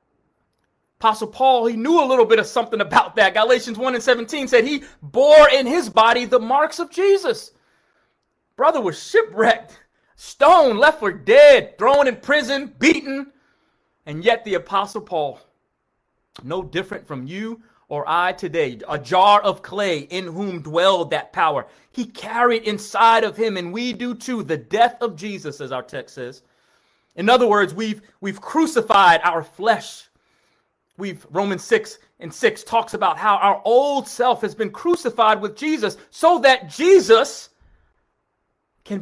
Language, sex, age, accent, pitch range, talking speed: English, male, 30-49, American, 175-265 Hz, 155 wpm